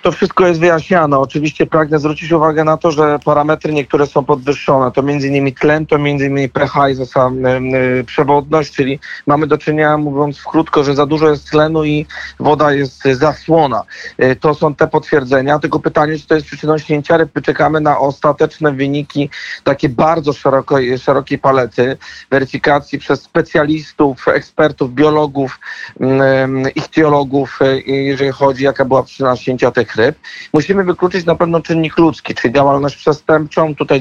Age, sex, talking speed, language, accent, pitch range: 40-59, male, 145 wpm, Polish, native, 135-155 Hz